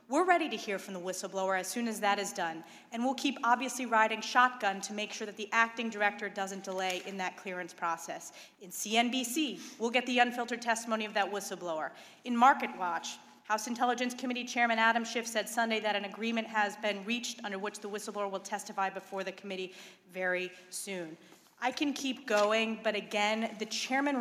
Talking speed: 195 wpm